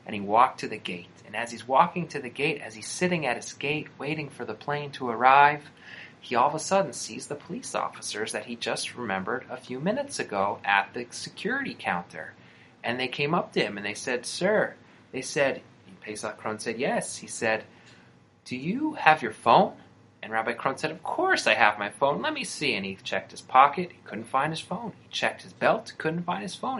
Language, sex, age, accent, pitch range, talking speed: English, male, 30-49, American, 115-165 Hz, 225 wpm